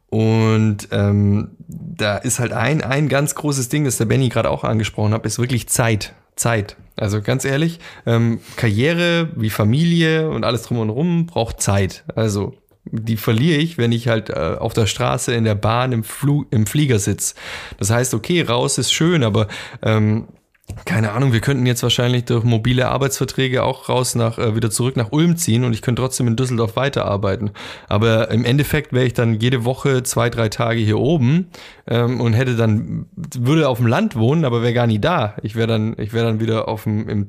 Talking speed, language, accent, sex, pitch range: 200 wpm, German, German, male, 110-135 Hz